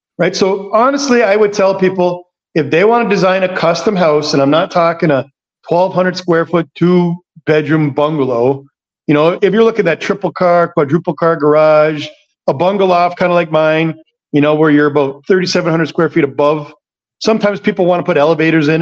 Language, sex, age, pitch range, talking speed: English, male, 40-59, 150-190 Hz, 205 wpm